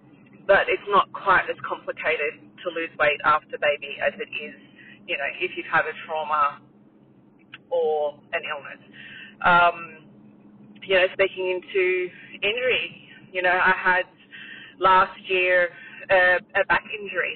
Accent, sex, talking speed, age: Australian, female, 140 wpm, 30-49